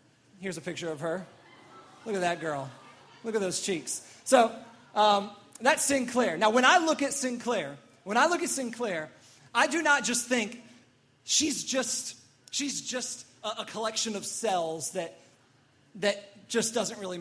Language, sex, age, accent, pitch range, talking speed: English, male, 30-49, American, 195-245 Hz, 165 wpm